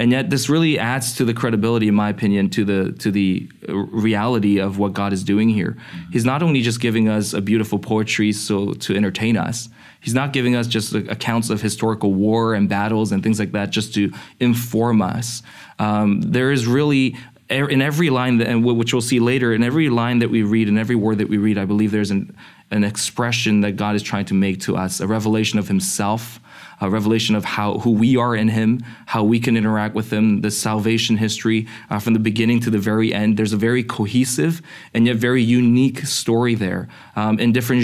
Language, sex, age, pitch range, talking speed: English, male, 20-39, 105-120 Hz, 210 wpm